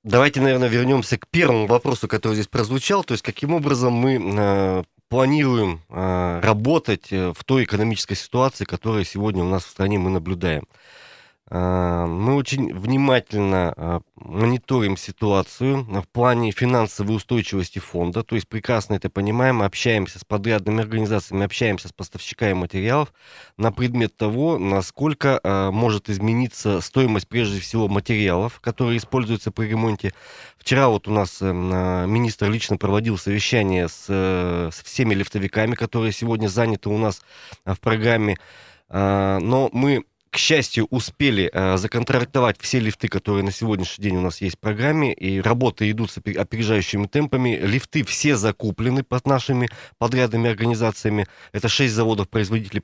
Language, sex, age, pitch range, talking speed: Russian, male, 20-39, 100-120 Hz, 135 wpm